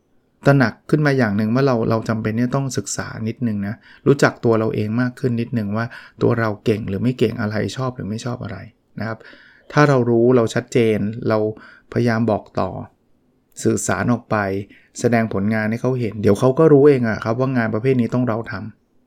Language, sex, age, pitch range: Thai, male, 20-39, 110-130 Hz